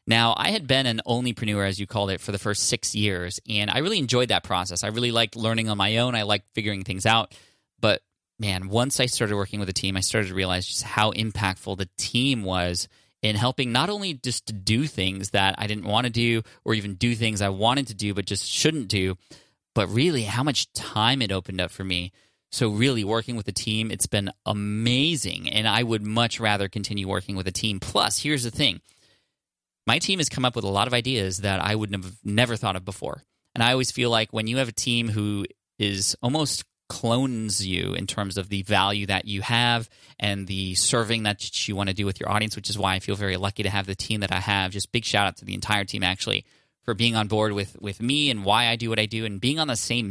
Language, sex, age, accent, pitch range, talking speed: English, male, 20-39, American, 100-120 Hz, 245 wpm